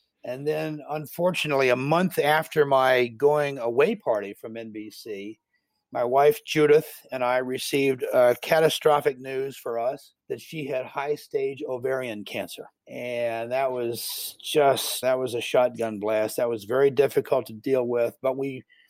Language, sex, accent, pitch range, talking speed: English, male, American, 125-150 Hz, 150 wpm